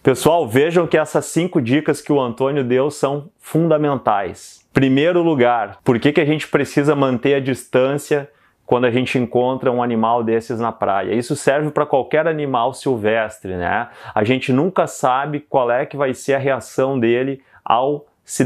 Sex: male